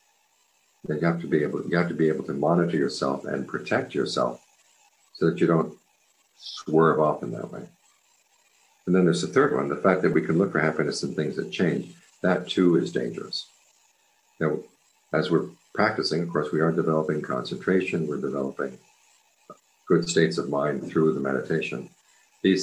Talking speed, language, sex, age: 180 wpm, English, male, 50-69